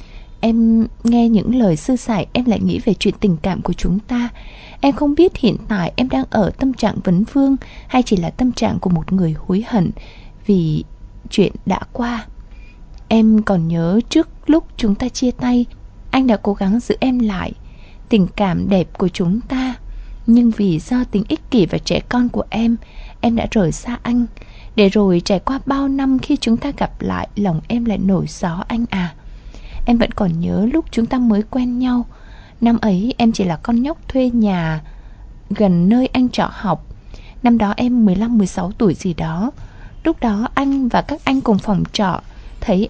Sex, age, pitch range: female, 20-39, 195-245 Hz